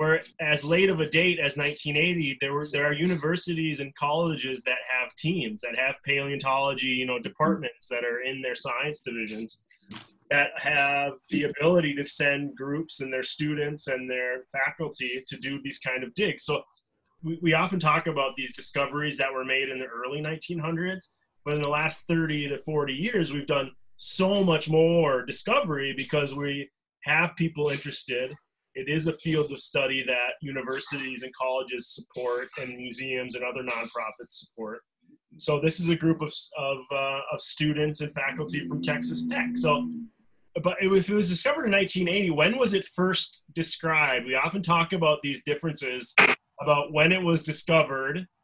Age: 30-49